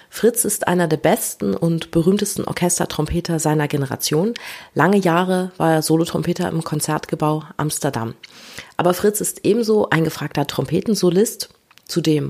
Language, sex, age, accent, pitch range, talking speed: German, female, 30-49, German, 155-195 Hz, 125 wpm